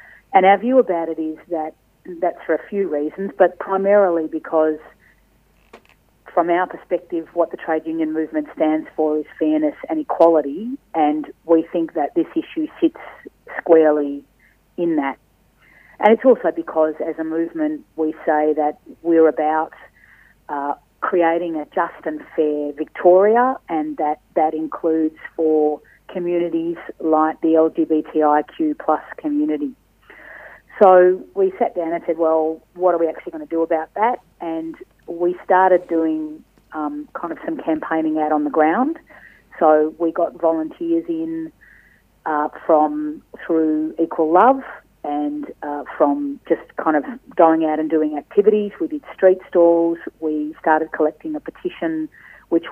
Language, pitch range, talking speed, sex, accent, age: English, 155-195 Hz, 145 wpm, female, Australian, 40-59